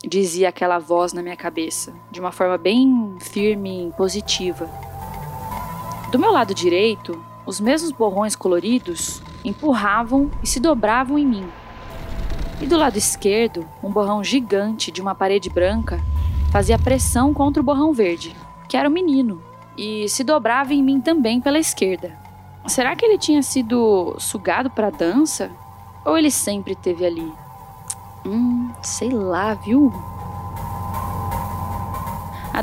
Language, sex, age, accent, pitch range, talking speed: Portuguese, female, 10-29, Brazilian, 180-280 Hz, 140 wpm